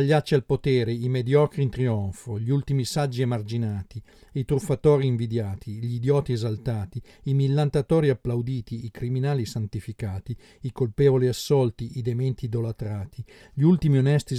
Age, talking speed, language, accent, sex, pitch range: 40-59, 140 wpm, Italian, native, male, 115-135 Hz